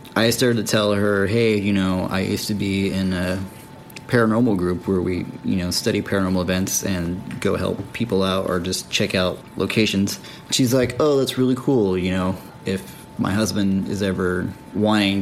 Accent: American